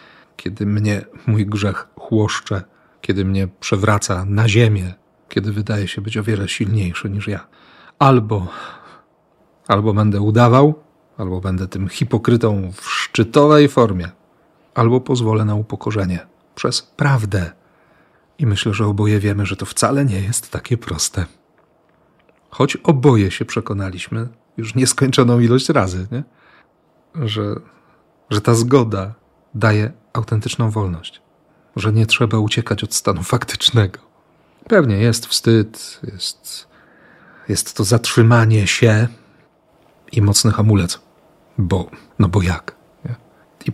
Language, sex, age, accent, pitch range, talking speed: Polish, male, 40-59, native, 100-120 Hz, 120 wpm